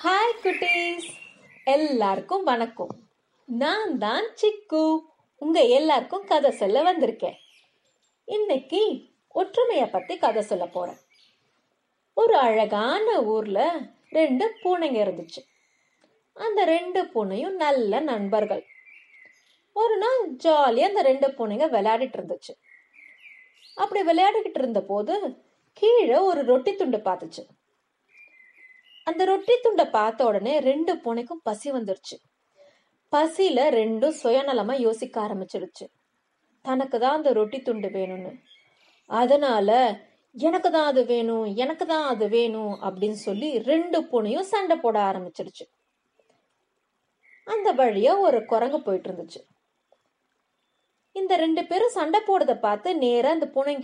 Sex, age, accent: female, 30-49, native